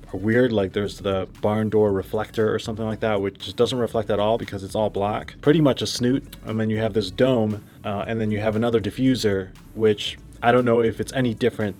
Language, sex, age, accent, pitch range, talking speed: English, male, 20-39, American, 105-130 Hz, 230 wpm